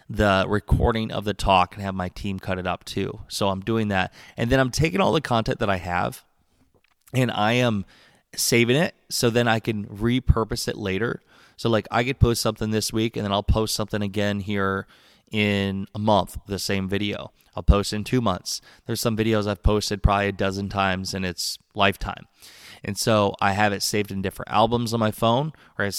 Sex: male